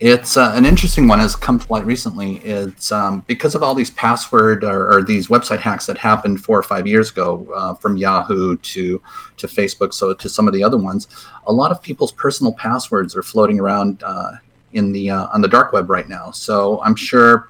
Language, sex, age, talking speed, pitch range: English, male, 30-49, 220 wpm, 100-130 Hz